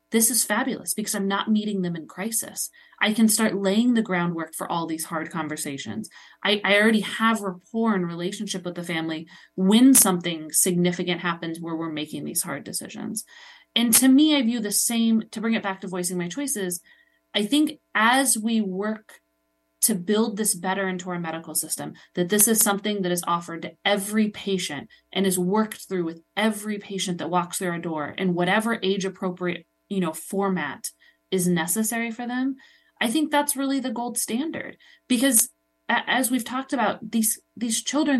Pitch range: 175-230 Hz